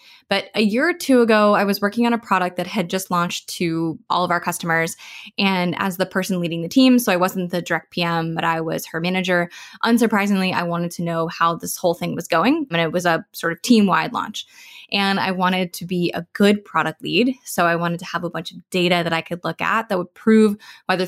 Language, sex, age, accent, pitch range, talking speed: English, female, 20-39, American, 170-205 Hz, 245 wpm